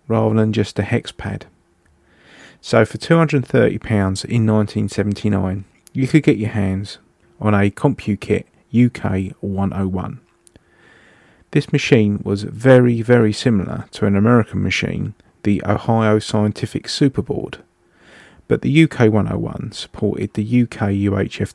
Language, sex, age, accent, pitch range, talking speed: English, male, 30-49, British, 100-120 Hz, 115 wpm